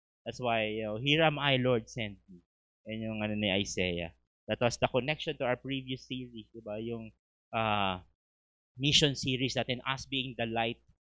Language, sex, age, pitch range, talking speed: English, male, 20-39, 100-140 Hz, 180 wpm